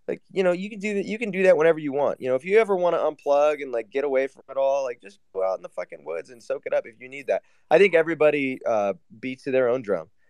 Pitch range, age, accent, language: 120-185 Hz, 20-39, American, English